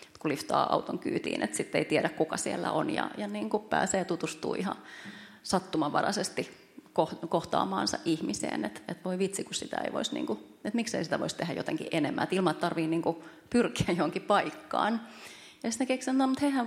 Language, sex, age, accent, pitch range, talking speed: Finnish, female, 30-49, native, 170-225 Hz, 165 wpm